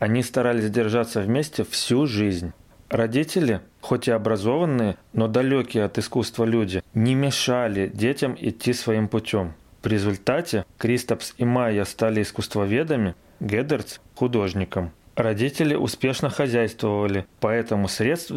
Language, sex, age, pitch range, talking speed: Russian, male, 30-49, 105-125 Hz, 115 wpm